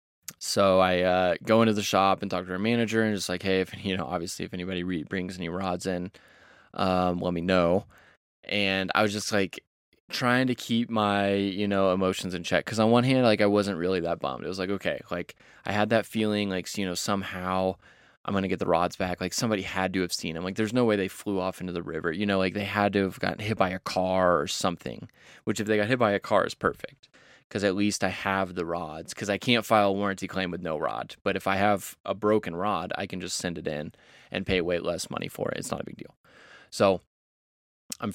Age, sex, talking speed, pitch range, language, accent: 20-39, male, 250 wpm, 90-105 Hz, English, American